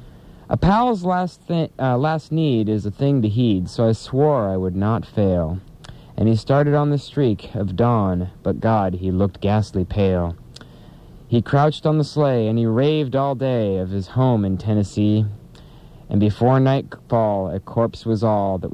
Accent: American